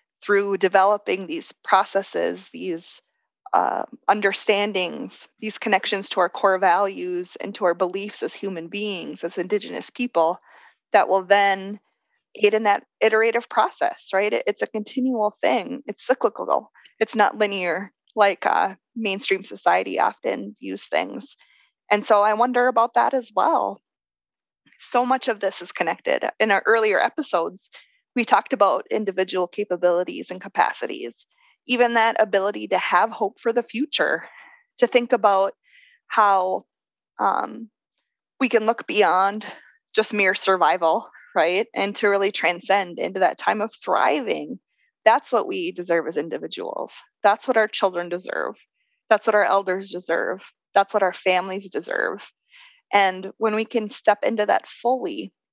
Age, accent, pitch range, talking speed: 20-39, American, 195-250 Hz, 145 wpm